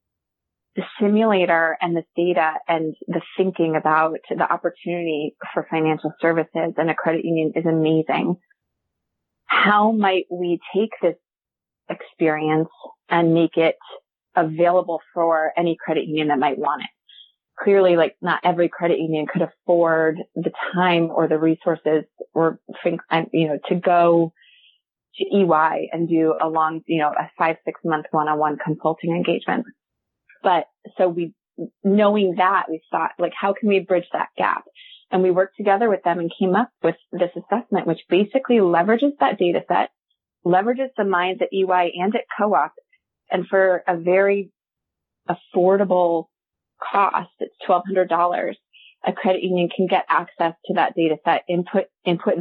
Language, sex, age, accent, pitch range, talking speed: English, female, 30-49, American, 160-190 Hz, 150 wpm